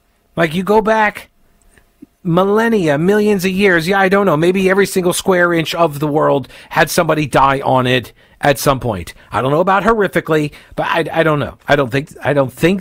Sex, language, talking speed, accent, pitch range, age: male, English, 205 wpm, American, 140-195 Hz, 40-59